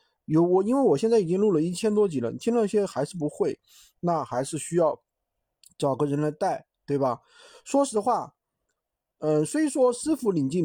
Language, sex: Chinese, male